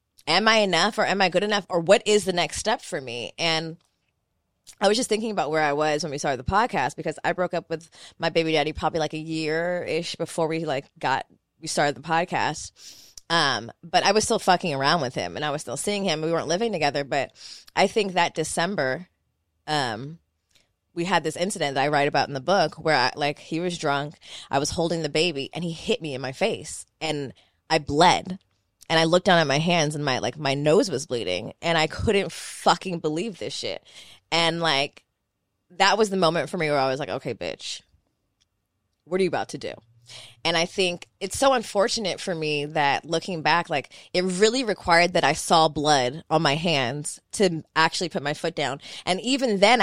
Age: 20-39